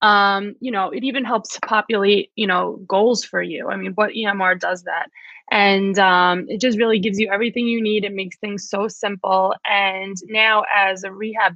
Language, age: English, 20-39